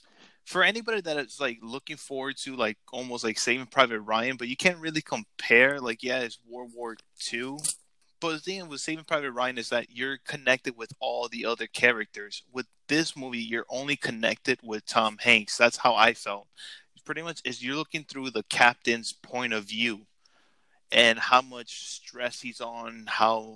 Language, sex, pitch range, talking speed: English, male, 115-140 Hz, 185 wpm